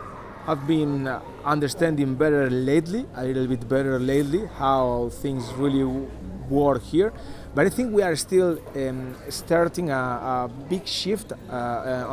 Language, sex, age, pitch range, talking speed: English, male, 30-49, 130-160 Hz, 145 wpm